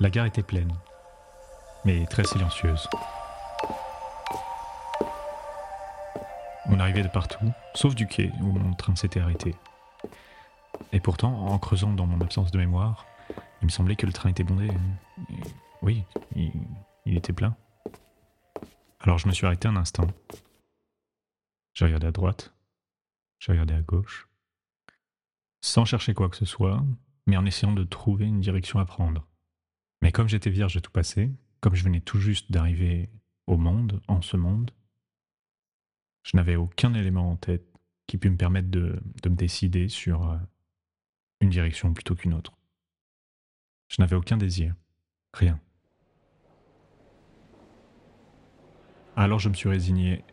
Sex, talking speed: male, 140 wpm